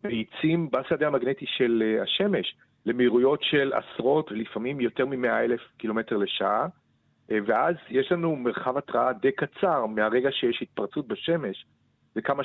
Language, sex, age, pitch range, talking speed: Hebrew, male, 40-59, 115-140 Hz, 125 wpm